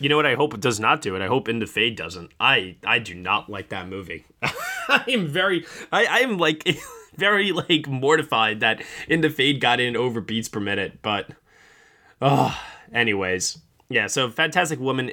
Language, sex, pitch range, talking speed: English, male, 100-135 Hz, 185 wpm